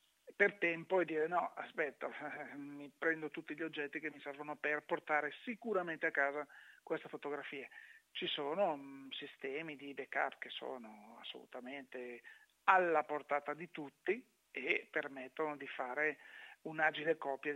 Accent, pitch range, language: native, 145-175 Hz, Italian